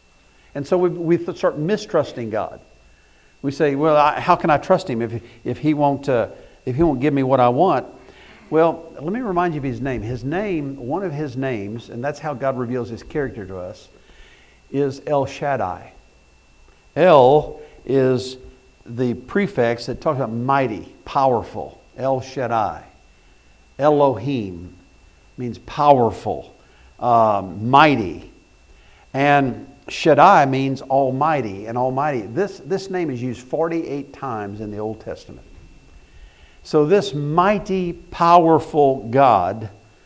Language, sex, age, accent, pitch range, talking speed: English, male, 60-79, American, 115-150 Hz, 130 wpm